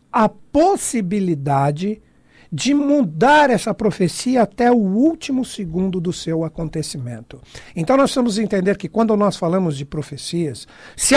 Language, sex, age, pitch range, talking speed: Portuguese, male, 60-79, 180-240 Hz, 135 wpm